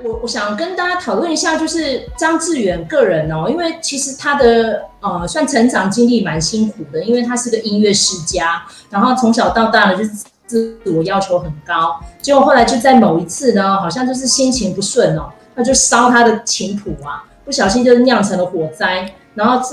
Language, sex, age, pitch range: Chinese, female, 30-49, 185-245 Hz